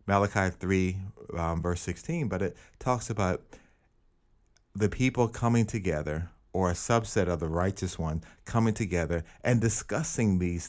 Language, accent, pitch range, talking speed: English, American, 90-120 Hz, 140 wpm